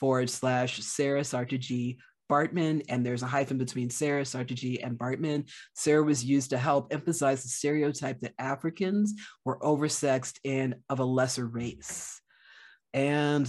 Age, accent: 40-59, American